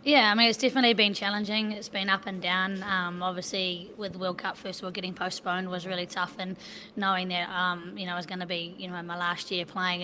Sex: female